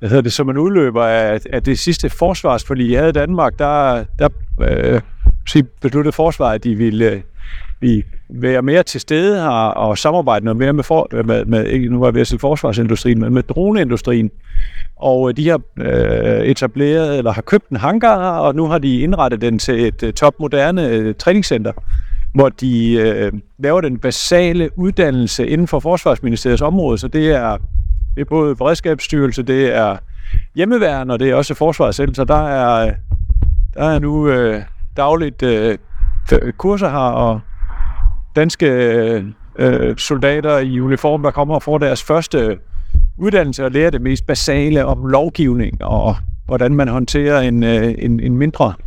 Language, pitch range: Danish, 110-150 Hz